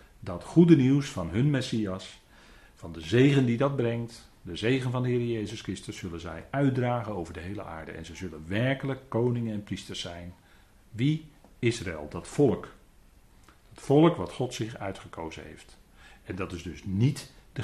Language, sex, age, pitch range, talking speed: Dutch, male, 40-59, 90-120 Hz, 175 wpm